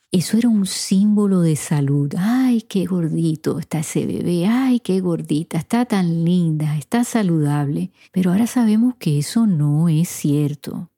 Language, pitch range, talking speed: Spanish, 150-195 Hz, 155 wpm